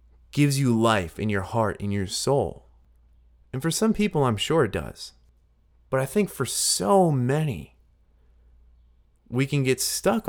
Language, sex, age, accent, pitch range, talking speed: English, male, 30-49, American, 80-130 Hz, 155 wpm